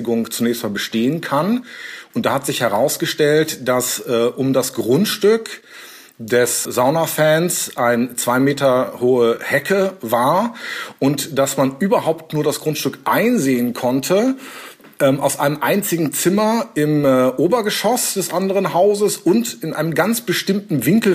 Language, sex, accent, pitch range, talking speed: German, male, German, 125-160 Hz, 130 wpm